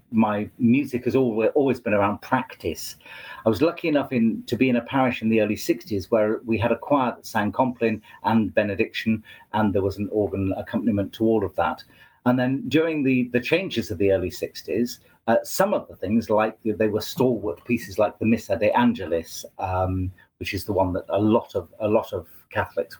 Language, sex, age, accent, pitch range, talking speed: English, male, 40-59, British, 100-125 Hz, 210 wpm